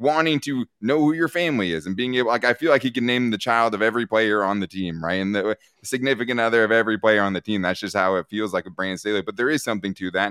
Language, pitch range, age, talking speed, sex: English, 105-145 Hz, 20-39, 295 wpm, male